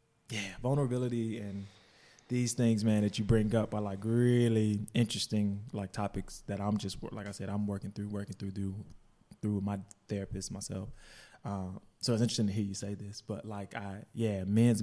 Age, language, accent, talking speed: 20-39, English, American, 190 wpm